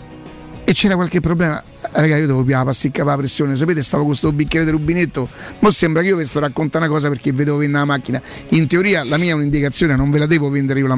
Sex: male